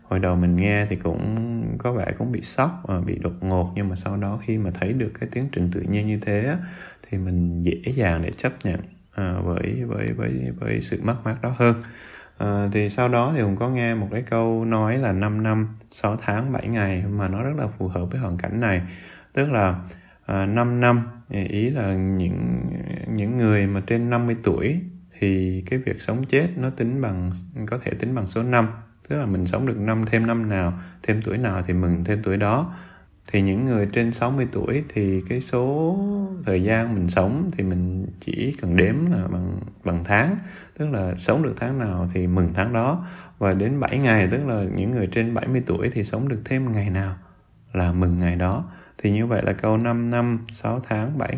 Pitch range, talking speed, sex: 95-120 Hz, 215 wpm, male